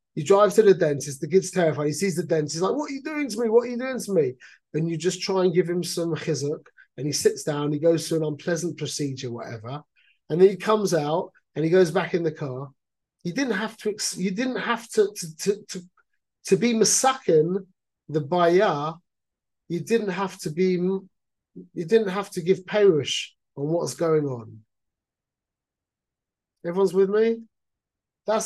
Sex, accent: male, British